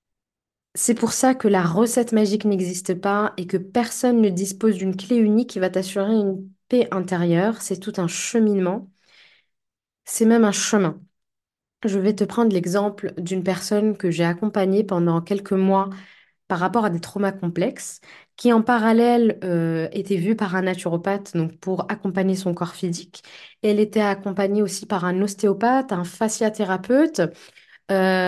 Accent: French